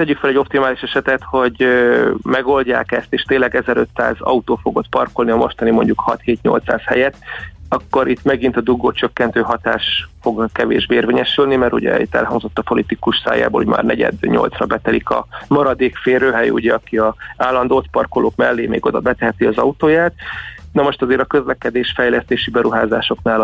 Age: 30-49